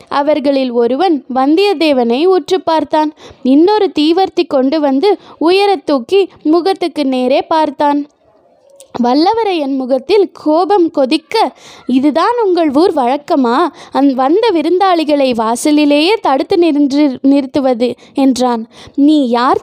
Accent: native